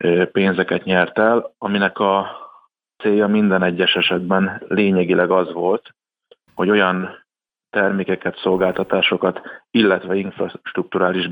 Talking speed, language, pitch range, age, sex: 95 wpm, Hungarian, 90-100 Hz, 30-49, male